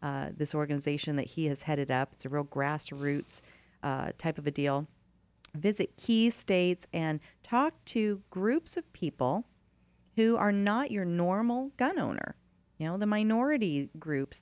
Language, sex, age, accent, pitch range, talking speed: English, female, 30-49, American, 150-205 Hz, 160 wpm